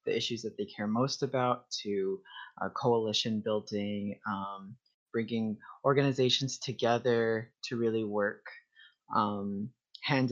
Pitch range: 105-125 Hz